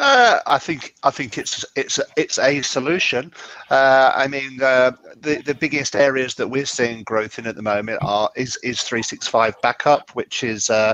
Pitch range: 125-145 Hz